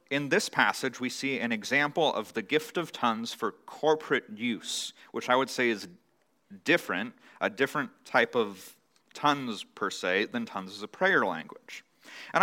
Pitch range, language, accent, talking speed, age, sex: 115-165 Hz, English, American, 170 wpm, 30-49, male